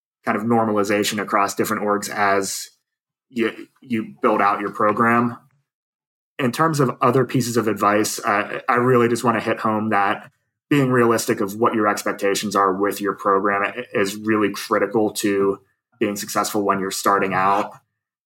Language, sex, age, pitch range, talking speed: English, male, 20-39, 100-110 Hz, 160 wpm